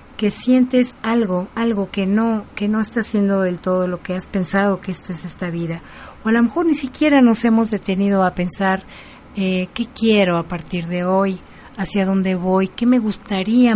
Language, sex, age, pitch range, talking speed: Spanish, female, 40-59, 185-225 Hz, 195 wpm